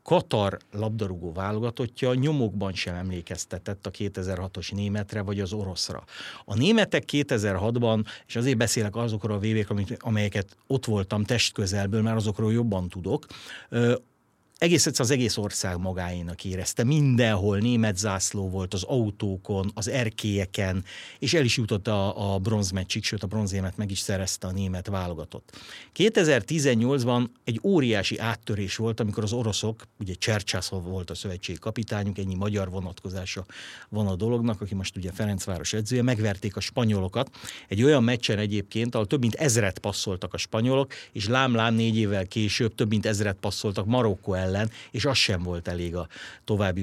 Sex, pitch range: male, 95-120 Hz